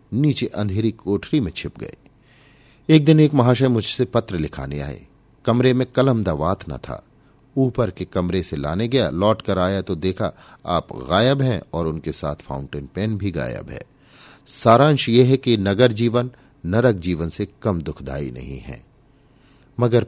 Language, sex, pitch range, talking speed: Hindi, male, 85-130 Hz, 165 wpm